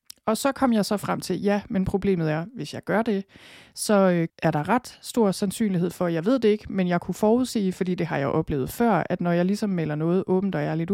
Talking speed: 250 wpm